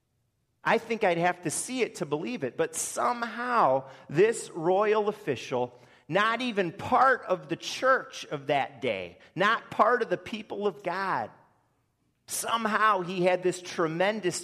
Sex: male